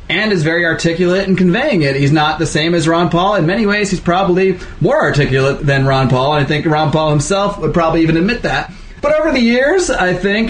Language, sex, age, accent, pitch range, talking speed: English, male, 30-49, American, 140-190 Hz, 235 wpm